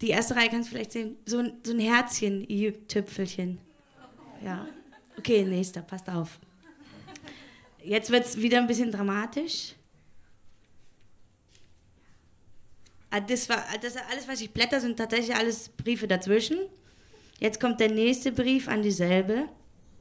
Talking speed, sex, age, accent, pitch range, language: 140 wpm, female, 20-39, German, 205-285 Hz, German